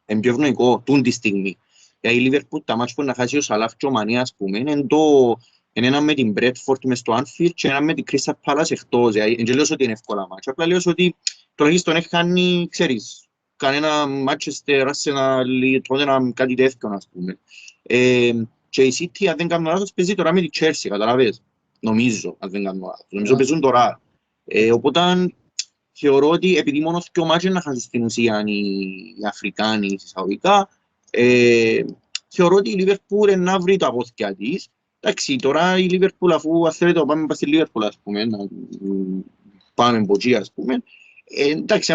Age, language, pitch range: 30-49, Greek, 115-165 Hz